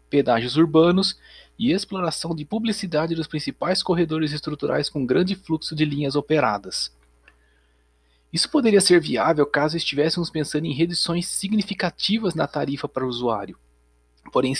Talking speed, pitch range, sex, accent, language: 130 wpm, 140-185 Hz, male, Brazilian, Portuguese